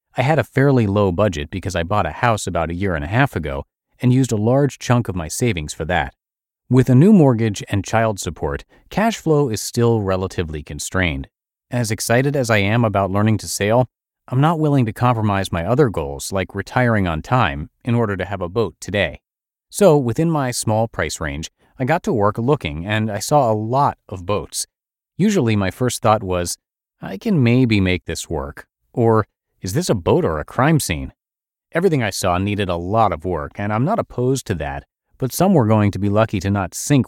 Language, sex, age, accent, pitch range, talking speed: English, male, 30-49, American, 95-125 Hz, 210 wpm